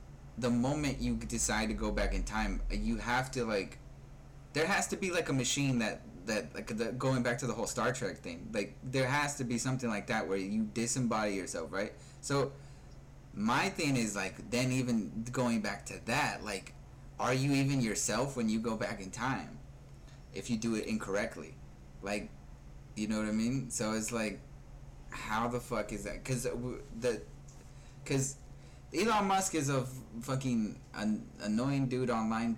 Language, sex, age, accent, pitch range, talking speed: English, male, 20-39, American, 110-135 Hz, 180 wpm